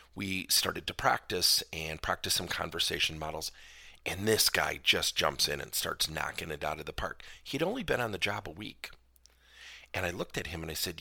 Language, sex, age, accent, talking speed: English, male, 50-69, American, 215 wpm